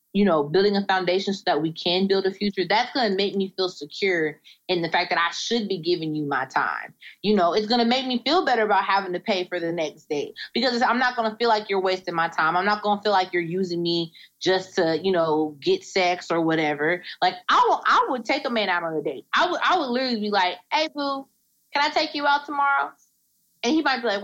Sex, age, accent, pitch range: female, 20-39, American, 175-235 Hz